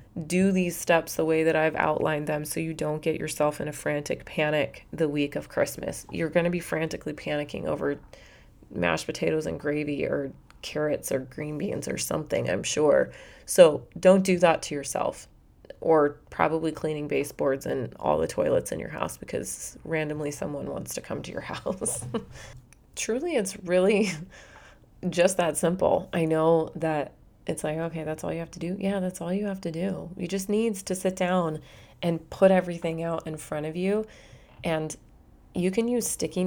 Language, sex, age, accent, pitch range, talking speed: English, female, 30-49, American, 150-180 Hz, 185 wpm